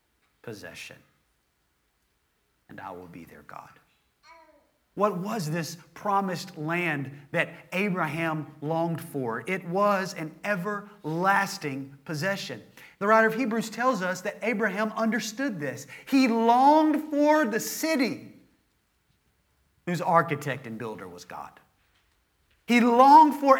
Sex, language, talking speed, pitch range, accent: male, English, 115 wpm, 135-225 Hz, American